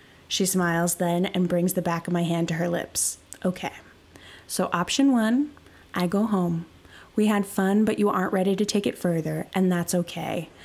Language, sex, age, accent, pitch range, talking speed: English, female, 20-39, American, 180-230 Hz, 190 wpm